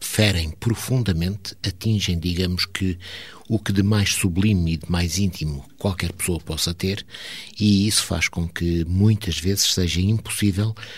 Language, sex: Portuguese, male